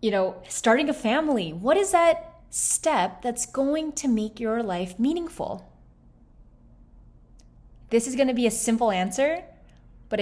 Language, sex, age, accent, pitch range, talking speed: English, female, 20-39, American, 185-255 Hz, 140 wpm